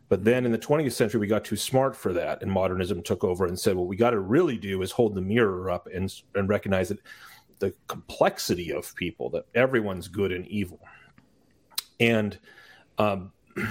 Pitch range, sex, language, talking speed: 95-115 Hz, male, English, 195 wpm